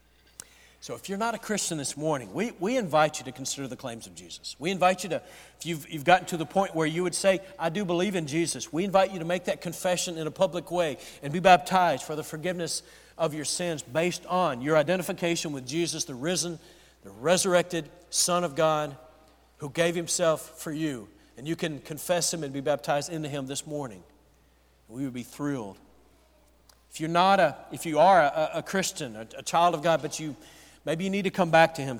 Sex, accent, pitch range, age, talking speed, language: male, American, 130-175 Hz, 50-69, 220 wpm, English